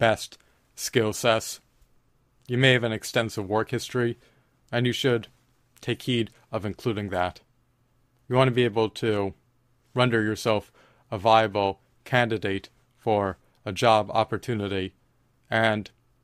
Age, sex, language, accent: 30-49, male, English, American